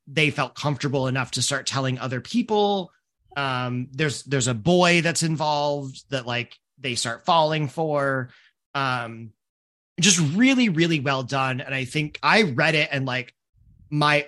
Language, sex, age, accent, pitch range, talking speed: English, male, 30-49, American, 125-160 Hz, 155 wpm